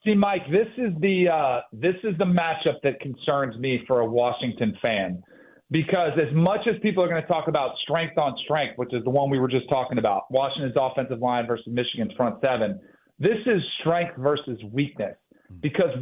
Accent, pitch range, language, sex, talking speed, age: American, 135-180 Hz, English, male, 195 wpm, 40-59